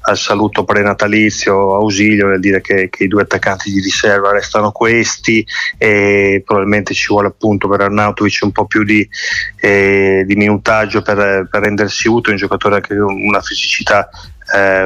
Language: Italian